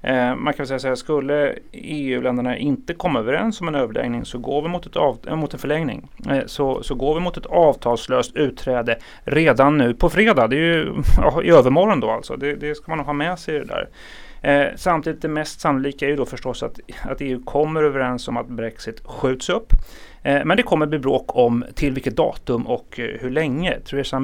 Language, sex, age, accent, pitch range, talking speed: Swedish, male, 30-49, native, 125-155 Hz, 220 wpm